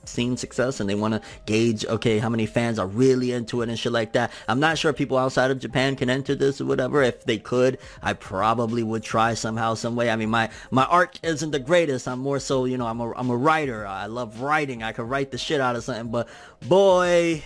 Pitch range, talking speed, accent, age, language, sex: 115-165 Hz, 250 wpm, American, 30-49, English, male